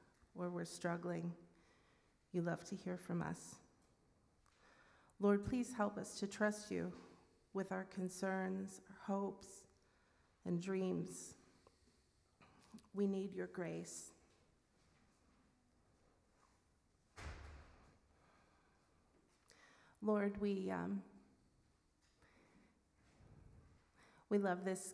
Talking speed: 80 wpm